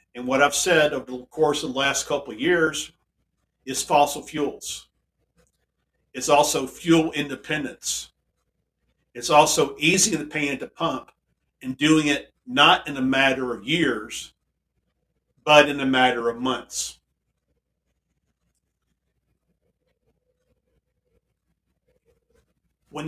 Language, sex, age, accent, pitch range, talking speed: English, male, 50-69, American, 120-160 Hz, 110 wpm